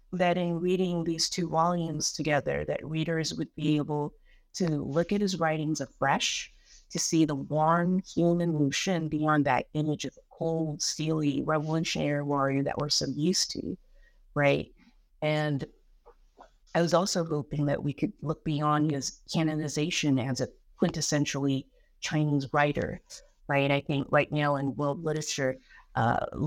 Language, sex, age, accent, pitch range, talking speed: English, female, 50-69, American, 145-170 Hz, 145 wpm